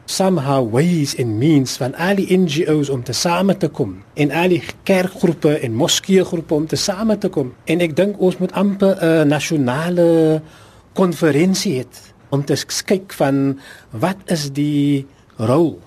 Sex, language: male, Dutch